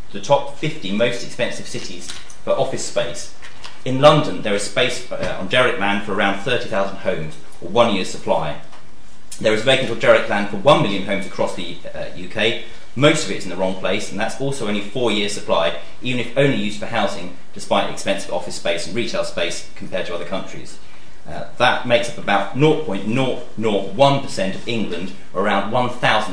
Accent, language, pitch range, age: British, English, 100-135 Hz, 30-49